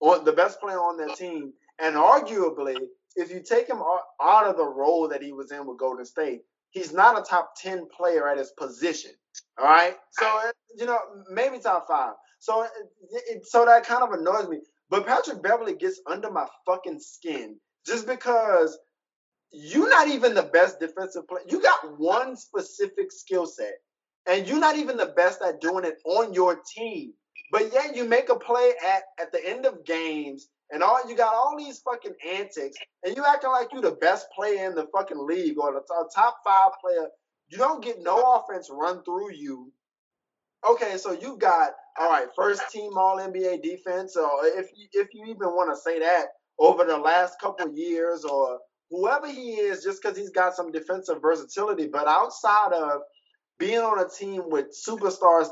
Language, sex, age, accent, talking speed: English, male, 20-39, American, 185 wpm